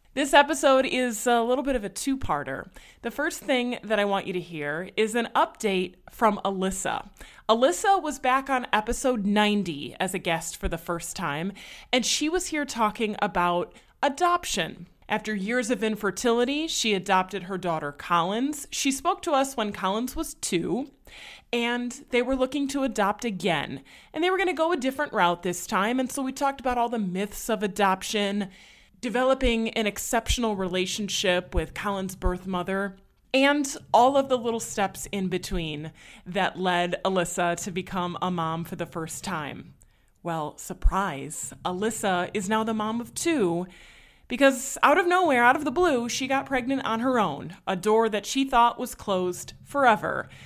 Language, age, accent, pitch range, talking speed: English, 20-39, American, 190-265 Hz, 175 wpm